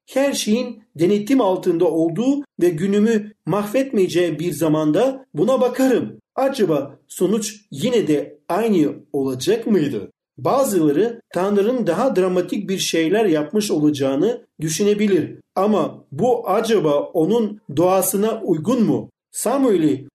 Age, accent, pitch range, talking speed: 50-69, native, 170-235 Hz, 105 wpm